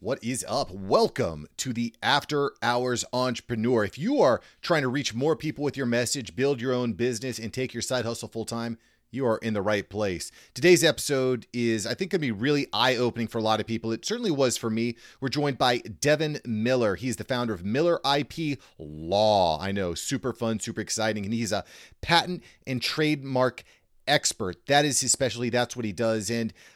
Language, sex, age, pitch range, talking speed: English, male, 30-49, 115-140 Hz, 200 wpm